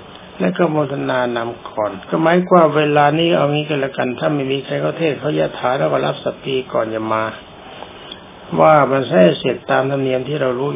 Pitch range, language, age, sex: 125-155 Hz, Thai, 60-79, male